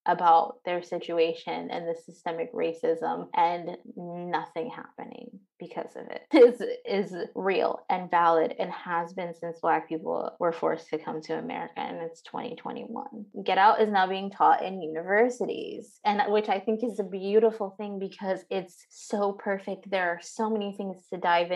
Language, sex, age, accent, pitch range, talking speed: English, female, 20-39, American, 180-220 Hz, 165 wpm